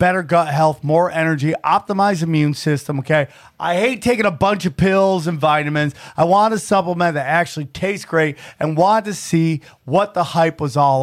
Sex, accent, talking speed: male, American, 190 wpm